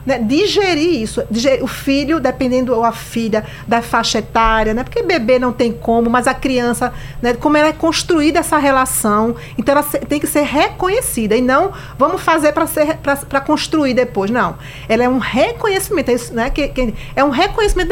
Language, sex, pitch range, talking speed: Portuguese, female, 225-310 Hz, 195 wpm